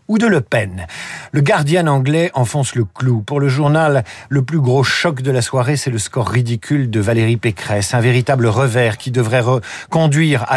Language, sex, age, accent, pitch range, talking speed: French, male, 50-69, French, 120-150 Hz, 200 wpm